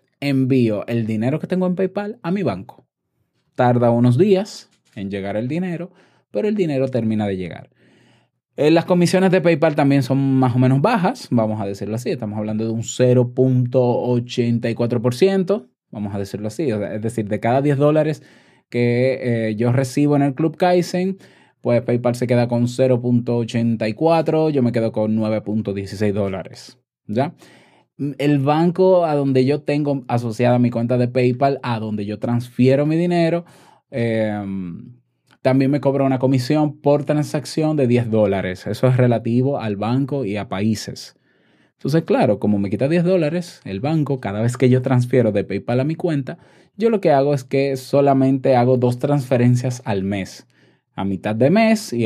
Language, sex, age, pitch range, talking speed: Spanish, male, 20-39, 115-145 Hz, 165 wpm